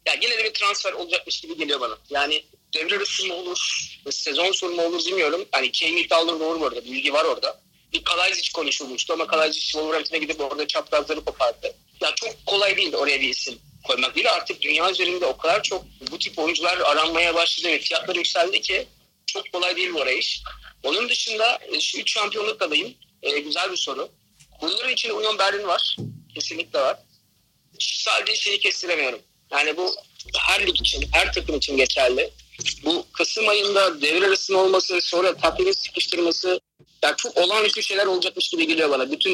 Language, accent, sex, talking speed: Turkish, native, male, 175 wpm